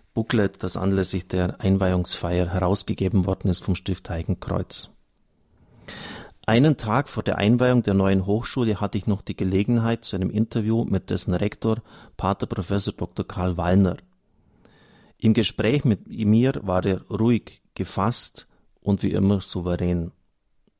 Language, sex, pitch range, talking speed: German, male, 95-115 Hz, 135 wpm